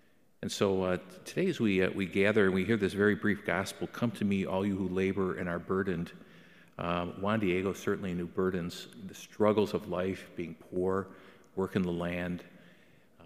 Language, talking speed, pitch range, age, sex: English, 190 wpm, 90-105 Hz, 50-69, male